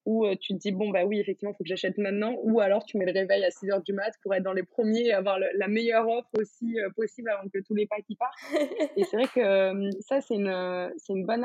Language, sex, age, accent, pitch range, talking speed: French, female, 20-39, French, 185-220 Hz, 290 wpm